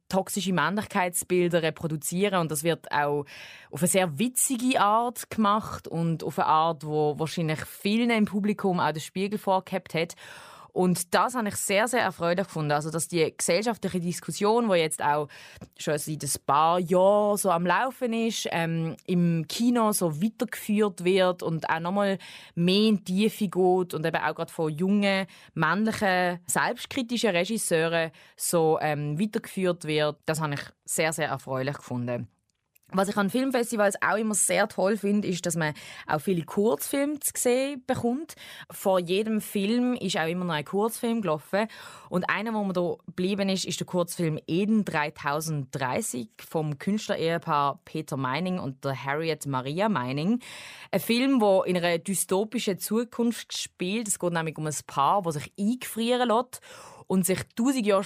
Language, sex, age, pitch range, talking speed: German, female, 20-39, 160-210 Hz, 160 wpm